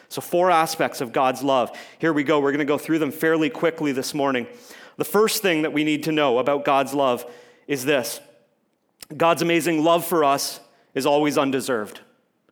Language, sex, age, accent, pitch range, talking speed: English, male, 40-59, American, 145-180 Hz, 190 wpm